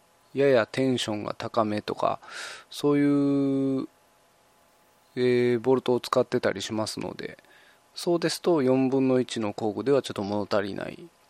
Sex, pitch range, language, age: male, 115-140 Hz, Japanese, 20-39